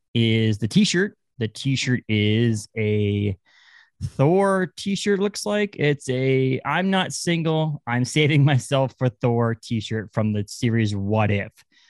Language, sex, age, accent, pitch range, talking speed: English, male, 20-39, American, 105-140 Hz, 155 wpm